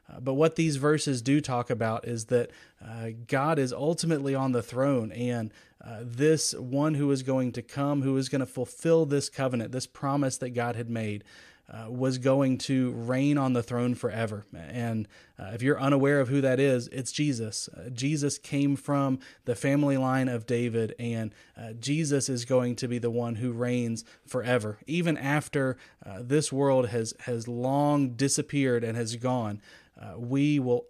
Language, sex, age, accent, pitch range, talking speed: English, male, 30-49, American, 120-140 Hz, 185 wpm